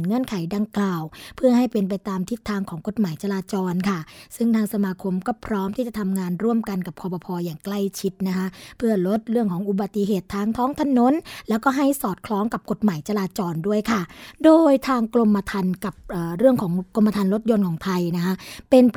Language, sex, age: Thai, female, 20-39